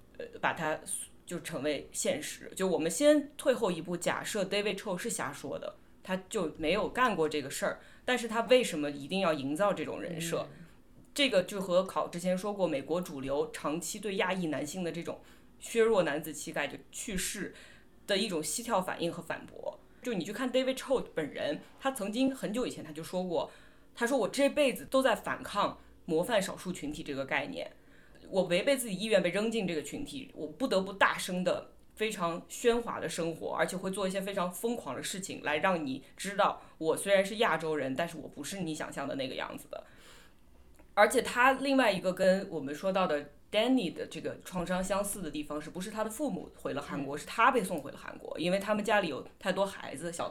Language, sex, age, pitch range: Chinese, female, 20-39, 165-230 Hz